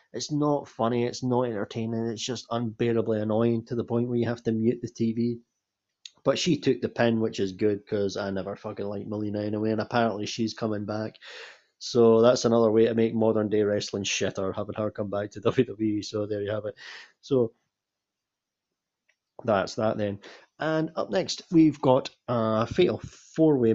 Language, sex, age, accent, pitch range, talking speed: English, male, 30-49, British, 105-120 Hz, 185 wpm